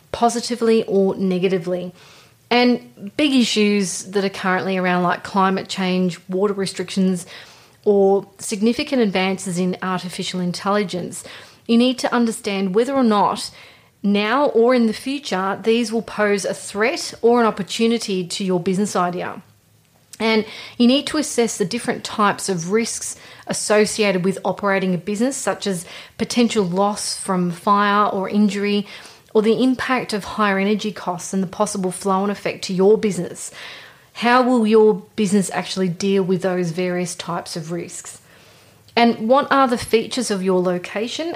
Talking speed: 150 wpm